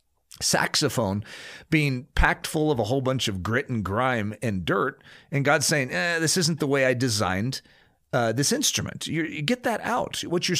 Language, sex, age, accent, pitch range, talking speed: English, male, 40-59, American, 115-155 Hz, 190 wpm